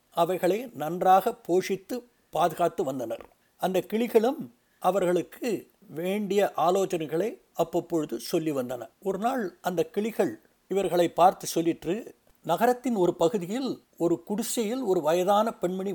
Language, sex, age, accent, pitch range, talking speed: Tamil, male, 60-79, native, 165-205 Hz, 105 wpm